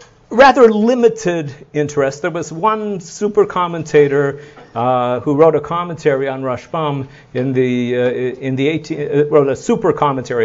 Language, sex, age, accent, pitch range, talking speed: English, male, 50-69, American, 125-180 Hz, 150 wpm